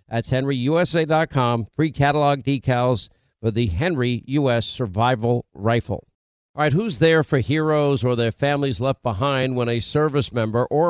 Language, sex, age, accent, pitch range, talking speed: English, male, 50-69, American, 120-145 Hz, 150 wpm